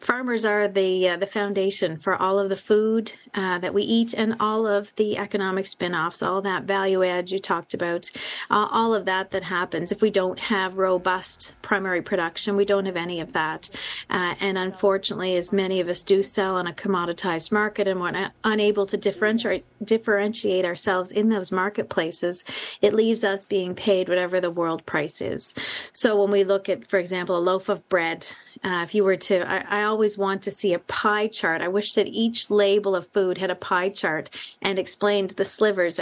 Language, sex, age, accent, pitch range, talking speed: English, female, 40-59, American, 180-205 Hz, 205 wpm